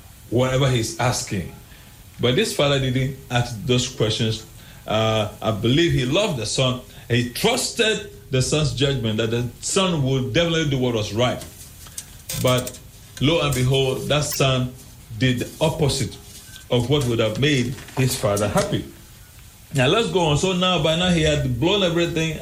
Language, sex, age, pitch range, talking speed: English, male, 40-59, 110-150 Hz, 160 wpm